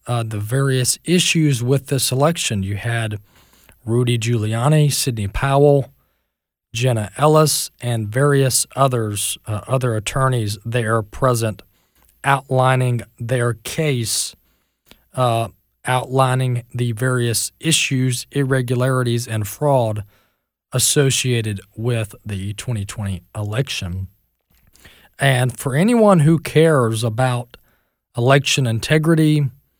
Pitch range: 105-140 Hz